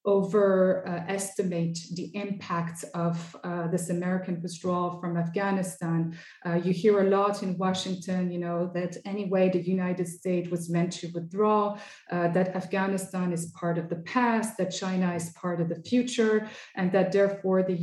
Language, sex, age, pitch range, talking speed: English, female, 30-49, 180-205 Hz, 165 wpm